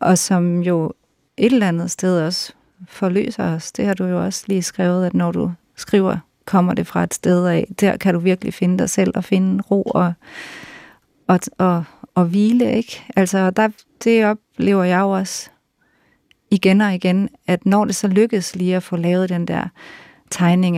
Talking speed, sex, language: 185 wpm, female, Danish